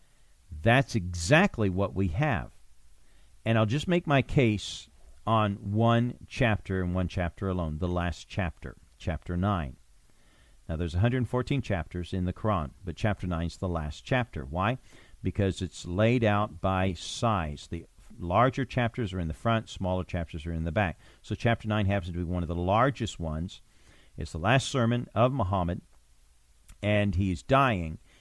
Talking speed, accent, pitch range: 165 wpm, American, 85-115 Hz